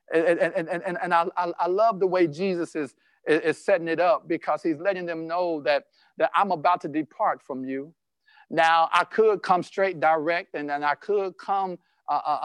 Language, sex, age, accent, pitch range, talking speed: English, male, 50-69, American, 165-210 Hz, 195 wpm